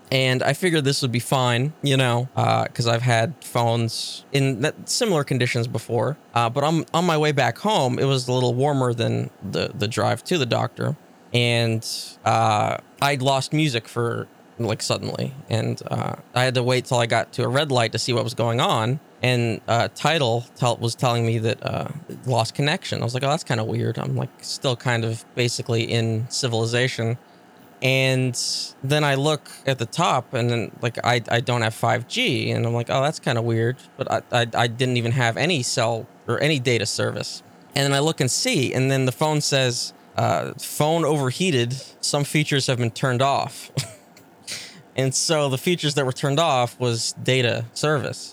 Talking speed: 200 wpm